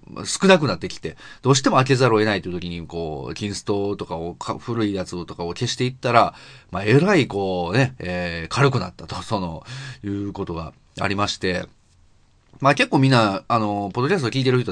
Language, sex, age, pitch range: Japanese, male, 30-49, 95-140 Hz